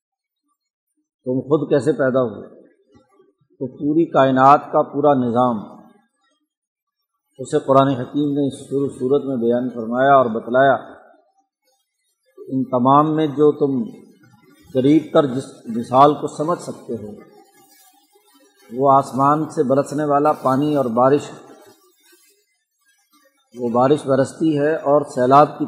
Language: Urdu